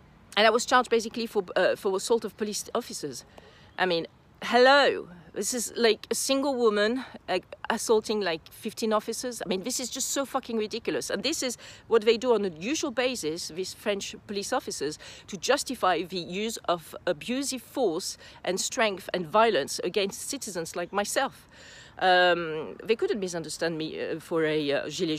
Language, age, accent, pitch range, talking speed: English, 40-59, French, 165-230 Hz, 170 wpm